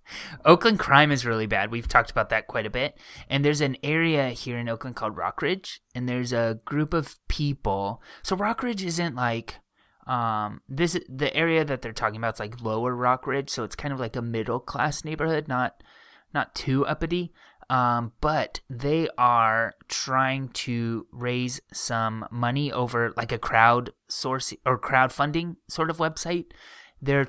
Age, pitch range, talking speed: 20-39, 115-155 Hz, 165 wpm